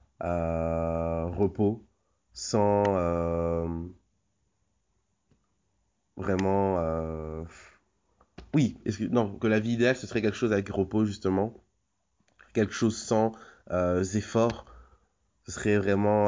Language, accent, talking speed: French, French, 105 wpm